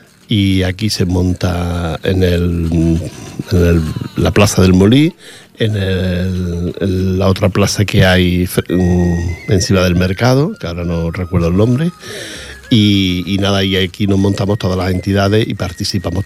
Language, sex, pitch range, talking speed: Portuguese, male, 90-105 Hz, 150 wpm